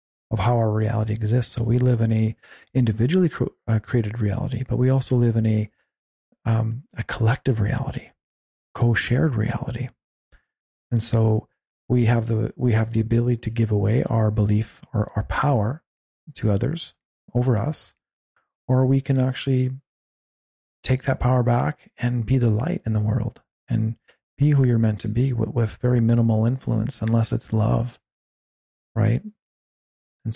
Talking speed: 155 wpm